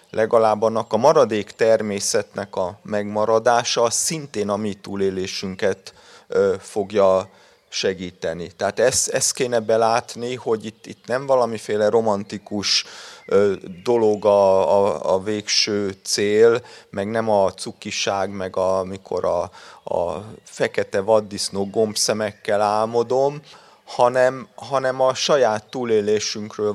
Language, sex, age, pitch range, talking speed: Hungarian, male, 30-49, 105-130 Hz, 110 wpm